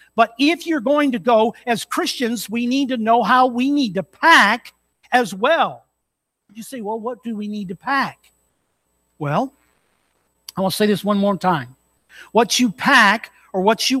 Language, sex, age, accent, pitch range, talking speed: English, male, 50-69, American, 185-265 Hz, 185 wpm